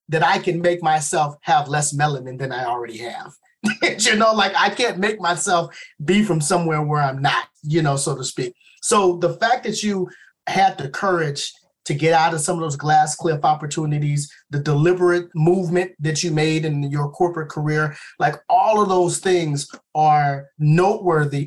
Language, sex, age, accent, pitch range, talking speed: English, male, 30-49, American, 150-180 Hz, 180 wpm